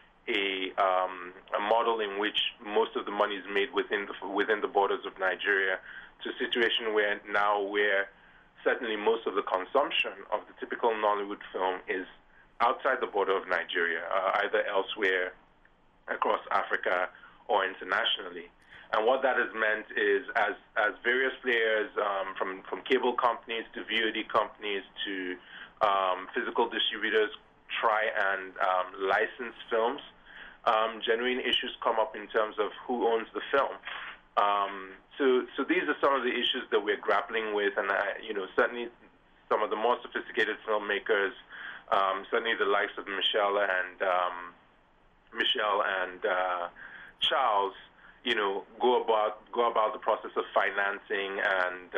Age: 30-49